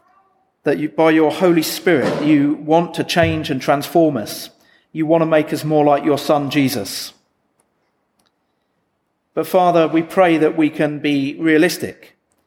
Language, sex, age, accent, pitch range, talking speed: English, male, 40-59, British, 140-170 Hz, 150 wpm